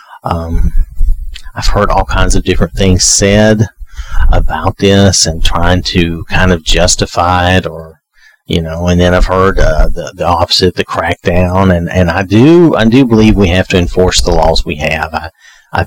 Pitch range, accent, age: 80-95 Hz, American, 40-59